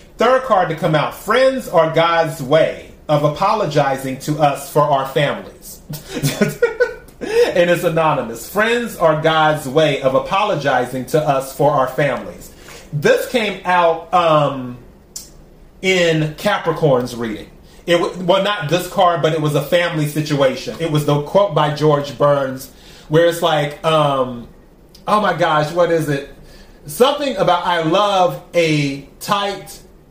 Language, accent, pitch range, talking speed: English, American, 145-180 Hz, 140 wpm